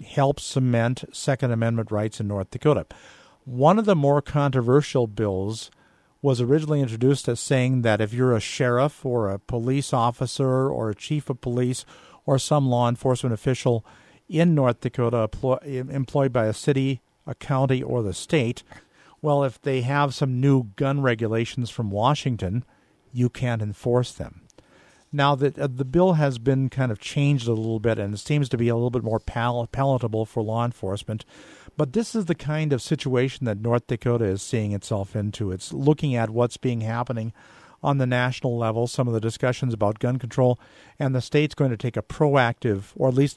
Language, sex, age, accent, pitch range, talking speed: English, male, 50-69, American, 115-140 Hz, 185 wpm